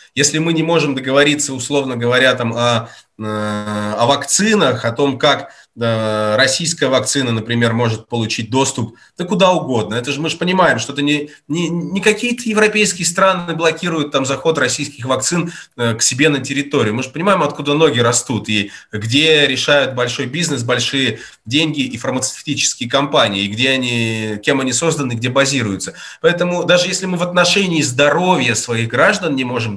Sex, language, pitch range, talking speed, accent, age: male, Russian, 120-170 Hz, 155 wpm, native, 20-39